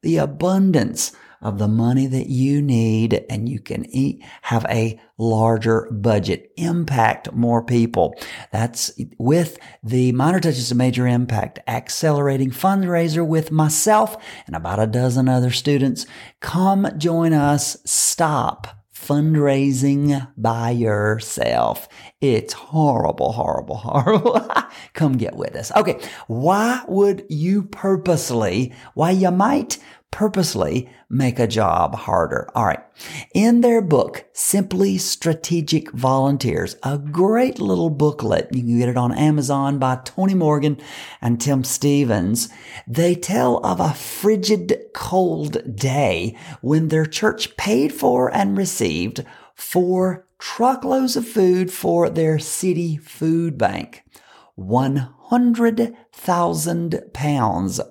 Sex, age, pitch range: male, 40-59, 120-180 Hz